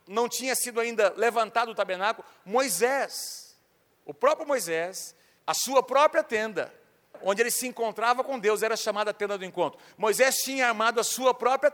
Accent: Brazilian